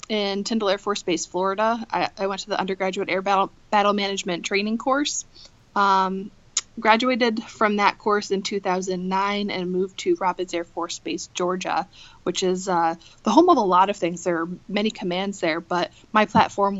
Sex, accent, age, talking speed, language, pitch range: female, American, 20-39, 180 wpm, English, 180-210 Hz